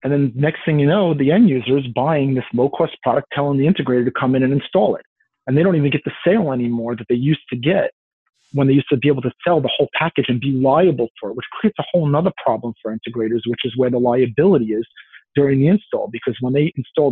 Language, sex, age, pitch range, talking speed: English, male, 40-59, 130-175 Hz, 255 wpm